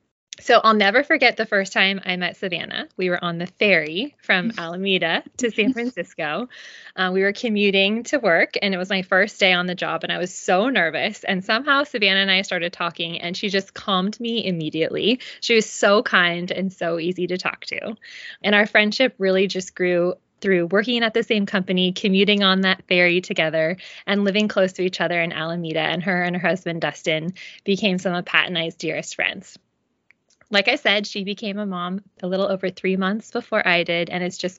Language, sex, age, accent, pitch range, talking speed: English, female, 20-39, American, 175-215 Hz, 210 wpm